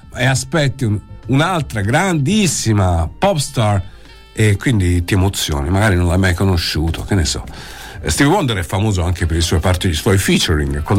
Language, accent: Italian, native